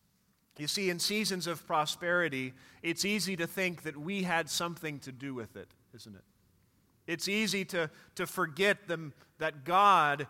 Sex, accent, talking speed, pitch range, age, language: male, American, 155 wpm, 140-185 Hz, 40-59, English